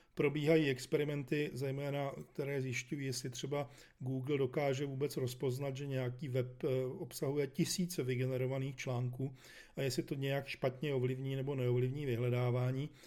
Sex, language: male, Czech